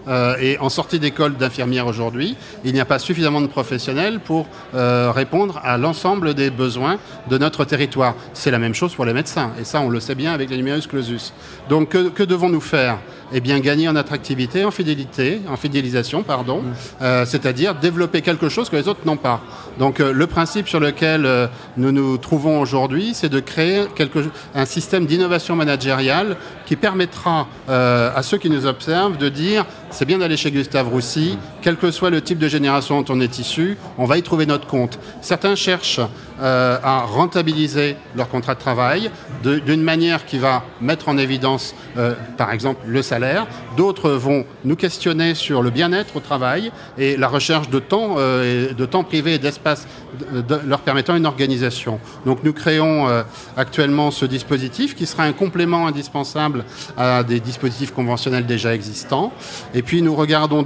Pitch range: 130-160 Hz